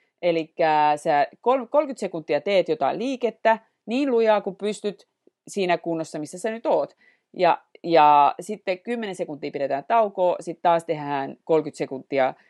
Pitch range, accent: 150-195 Hz, native